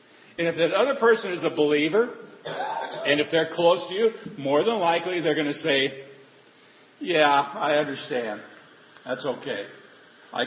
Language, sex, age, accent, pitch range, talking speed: English, male, 50-69, American, 140-175 Hz, 155 wpm